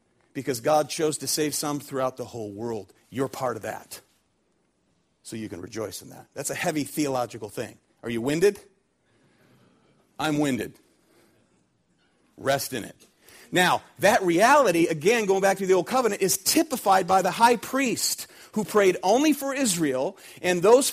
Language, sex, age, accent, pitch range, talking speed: English, male, 40-59, American, 150-230 Hz, 160 wpm